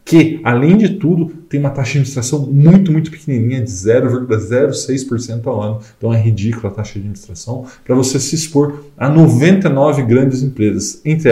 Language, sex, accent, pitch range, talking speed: Portuguese, male, Brazilian, 115-145 Hz, 170 wpm